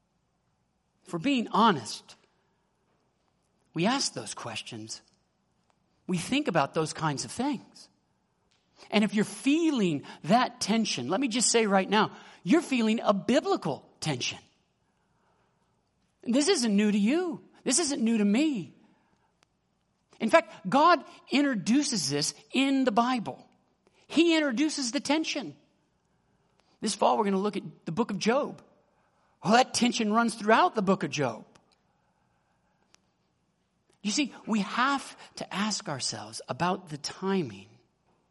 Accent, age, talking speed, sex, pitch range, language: American, 50-69, 135 wpm, male, 160-240 Hz, English